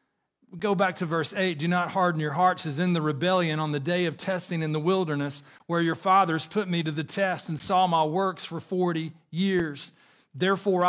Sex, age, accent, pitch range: male, 40-59, American, 175-215 Hz